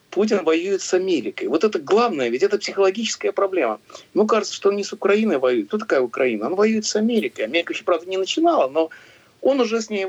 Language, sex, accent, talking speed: Russian, male, native, 215 wpm